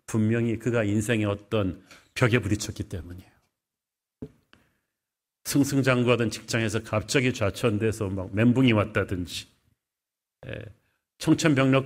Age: 40-59